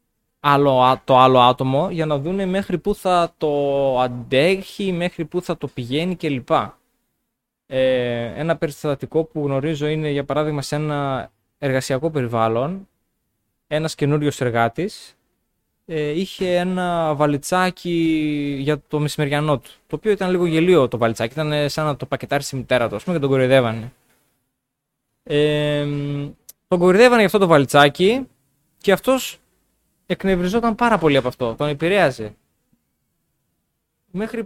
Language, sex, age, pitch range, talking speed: Greek, male, 20-39, 135-180 Hz, 125 wpm